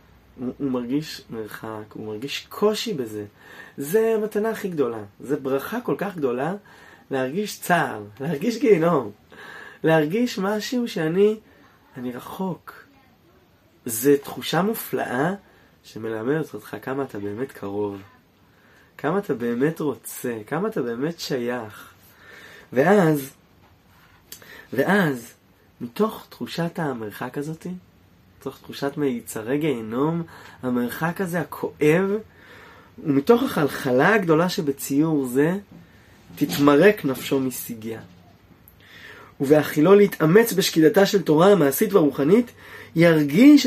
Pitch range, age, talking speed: 125-195 Hz, 20-39, 95 wpm